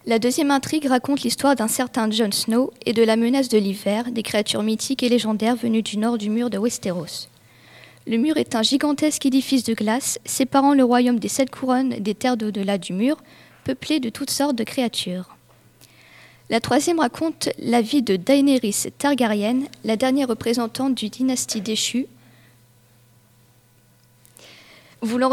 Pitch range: 210-270 Hz